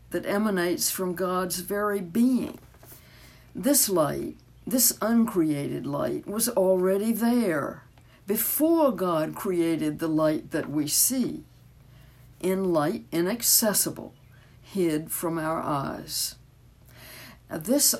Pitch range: 160-220 Hz